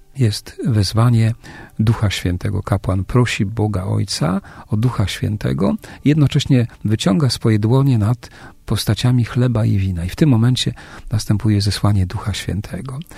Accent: native